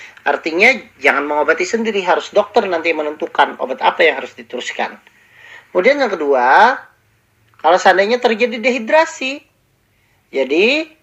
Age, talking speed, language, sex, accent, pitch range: 40-59, 115 wpm, Indonesian, male, native, 160-235 Hz